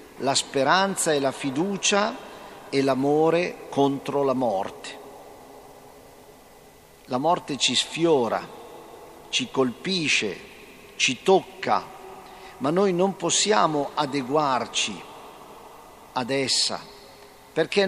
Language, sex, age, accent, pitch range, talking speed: Italian, male, 50-69, native, 135-180 Hz, 85 wpm